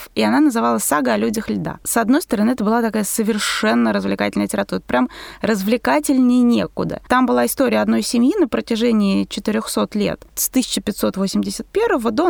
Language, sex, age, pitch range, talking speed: Russian, female, 20-39, 215-275 Hz, 145 wpm